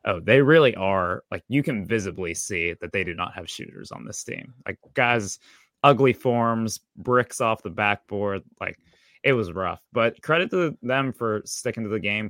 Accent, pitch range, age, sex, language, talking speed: American, 95-115 Hz, 20-39, male, English, 190 wpm